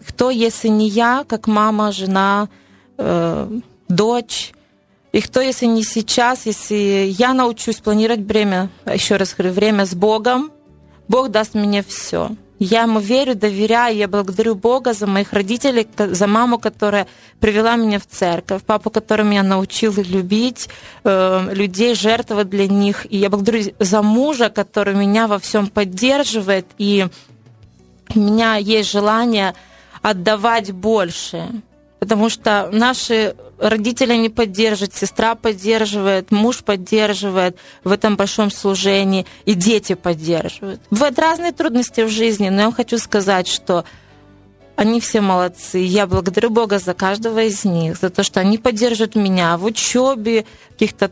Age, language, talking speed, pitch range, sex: 20-39, Ukrainian, 140 wpm, 195-230 Hz, female